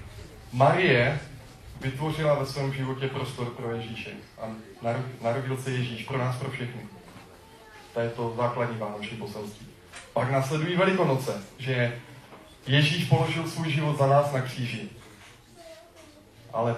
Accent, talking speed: native, 125 wpm